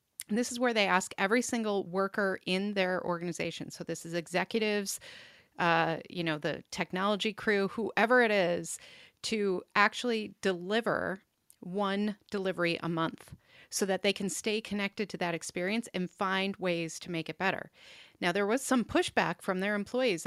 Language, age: English, 30-49